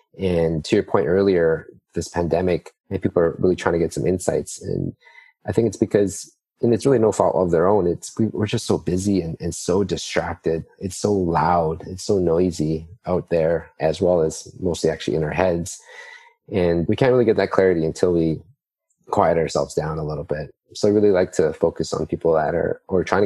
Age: 30-49